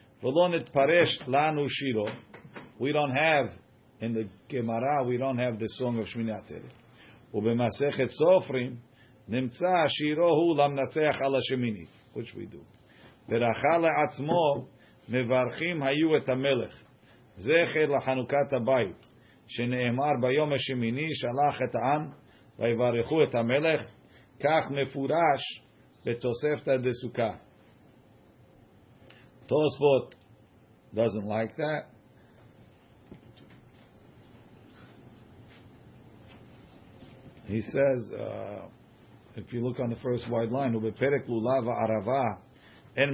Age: 50-69